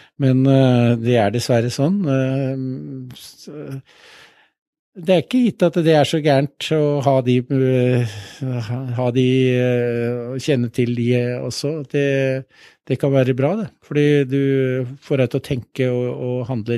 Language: English